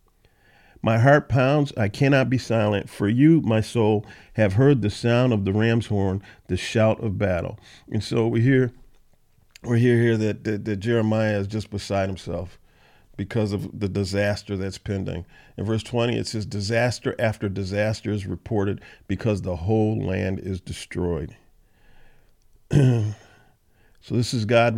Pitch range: 105-130 Hz